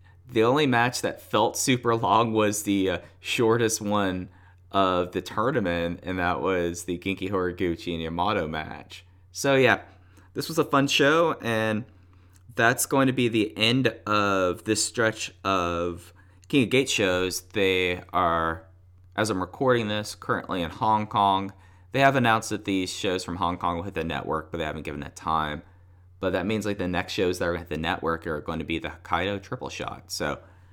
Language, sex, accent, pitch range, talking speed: English, male, American, 90-110 Hz, 185 wpm